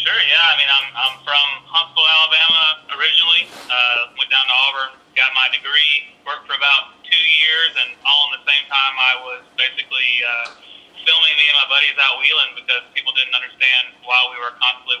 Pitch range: 120-140 Hz